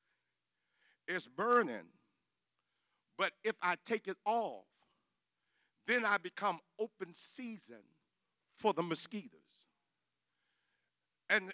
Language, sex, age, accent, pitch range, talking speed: English, male, 50-69, American, 185-235 Hz, 90 wpm